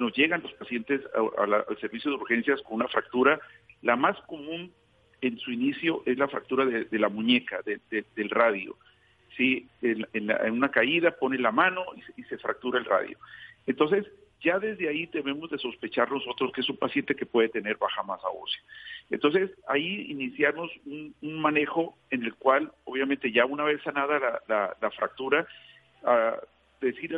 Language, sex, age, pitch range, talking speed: Spanish, male, 50-69, 125-190 Hz, 185 wpm